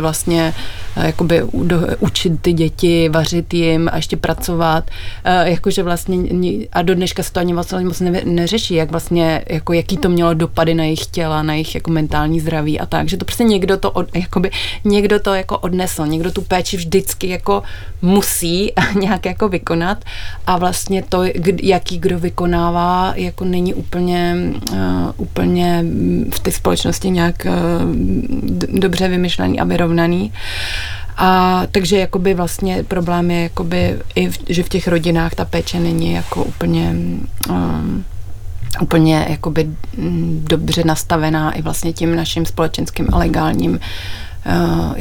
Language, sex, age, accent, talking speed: Czech, female, 30-49, native, 140 wpm